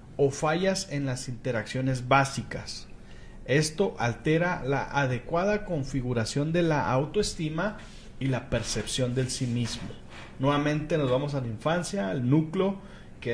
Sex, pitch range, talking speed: male, 125-175 Hz, 130 wpm